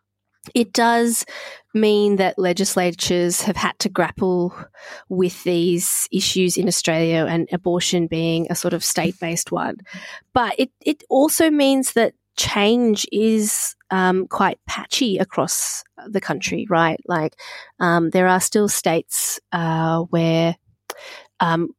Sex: female